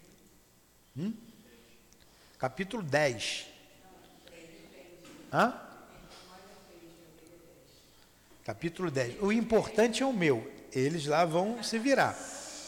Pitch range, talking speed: 135-190 Hz, 75 wpm